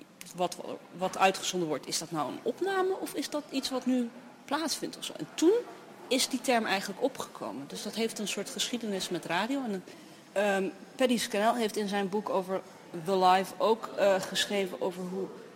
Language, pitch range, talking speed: Dutch, 185-245 Hz, 185 wpm